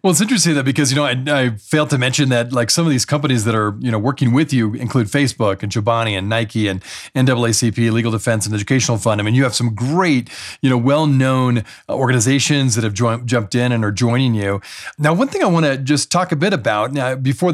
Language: English